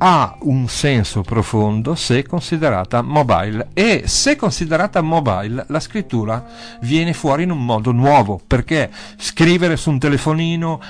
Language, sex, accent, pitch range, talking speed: Italian, male, native, 120-165 Hz, 130 wpm